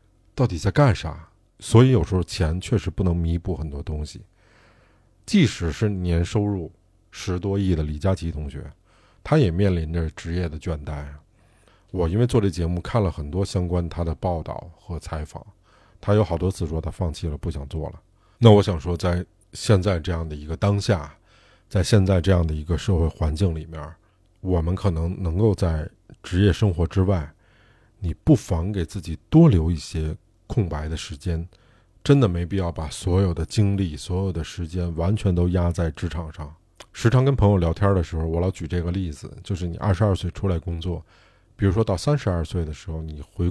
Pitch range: 85-100 Hz